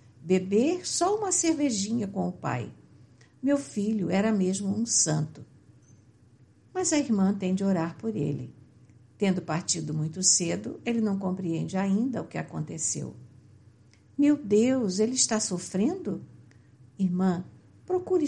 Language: Portuguese